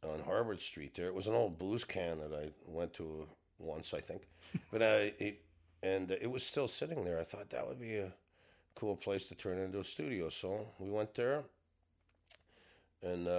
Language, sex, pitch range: English, male, 85-100 Hz